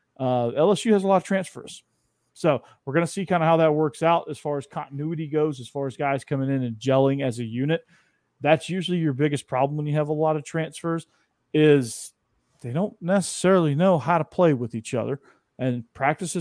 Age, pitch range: 40-59, 130-160 Hz